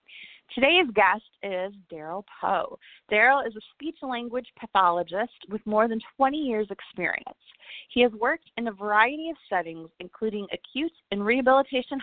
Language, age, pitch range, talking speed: English, 30-49, 200-265 Hz, 140 wpm